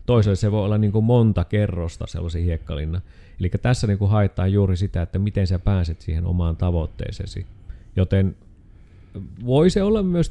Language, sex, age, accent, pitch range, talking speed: Finnish, male, 30-49, native, 85-100 Hz, 150 wpm